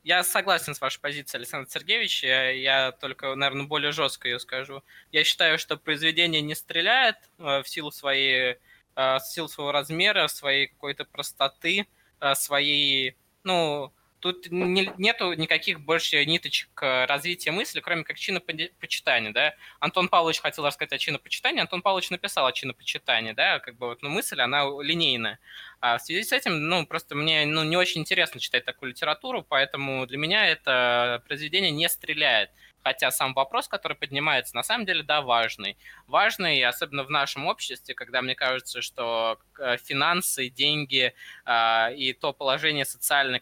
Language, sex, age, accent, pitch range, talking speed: Russian, male, 20-39, native, 130-165 Hz, 150 wpm